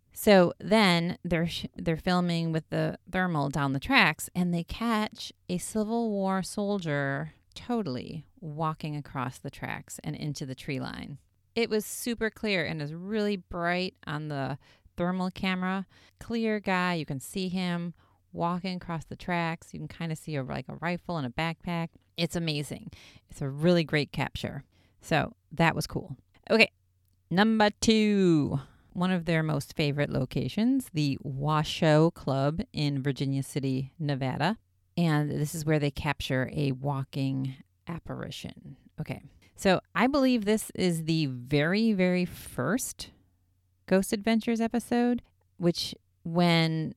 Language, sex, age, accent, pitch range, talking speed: English, female, 30-49, American, 140-185 Hz, 145 wpm